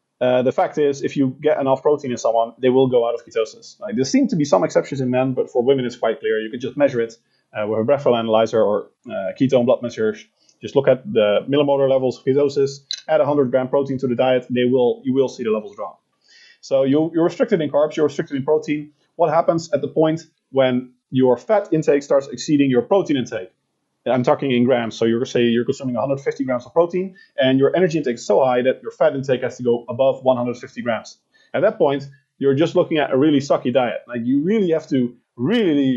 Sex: male